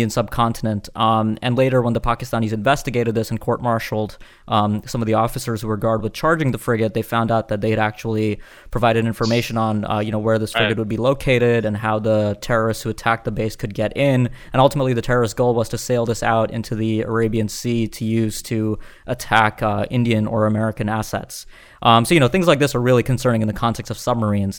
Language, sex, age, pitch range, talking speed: English, male, 20-39, 110-125 Hz, 225 wpm